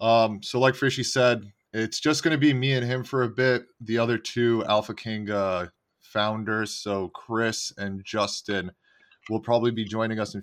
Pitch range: 100-115 Hz